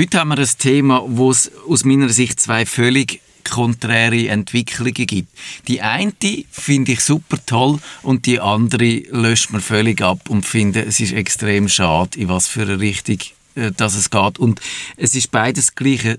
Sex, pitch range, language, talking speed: male, 110-130 Hz, German, 180 wpm